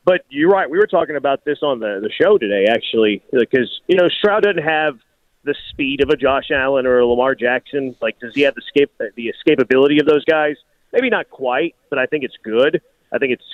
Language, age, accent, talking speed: English, 30-49, American, 230 wpm